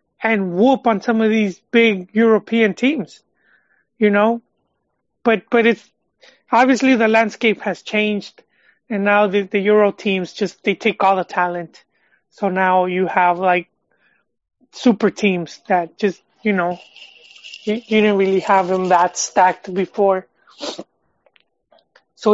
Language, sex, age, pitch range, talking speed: English, male, 30-49, 190-225 Hz, 140 wpm